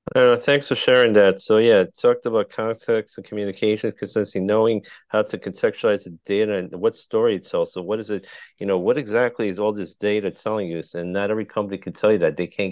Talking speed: 225 wpm